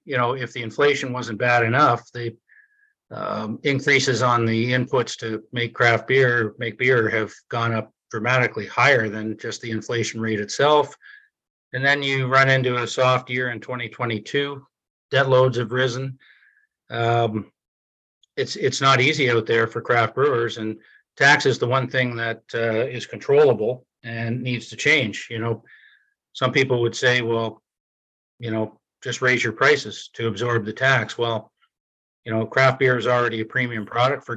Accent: American